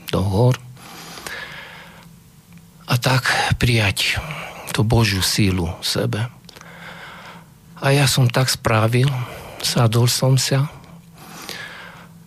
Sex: male